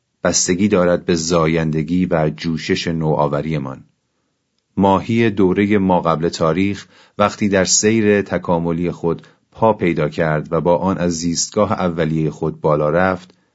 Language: Persian